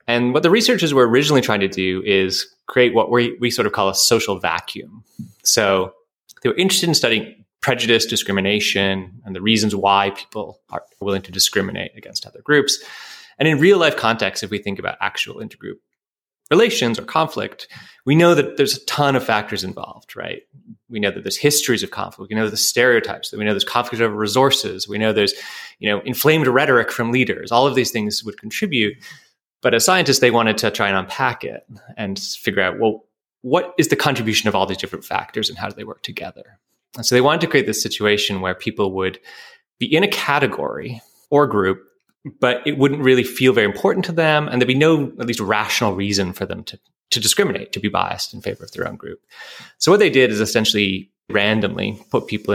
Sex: male